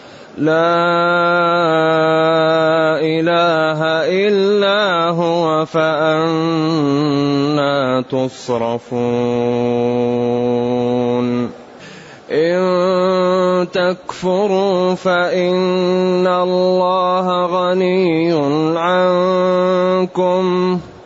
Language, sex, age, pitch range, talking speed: Arabic, male, 20-39, 160-185 Hz, 35 wpm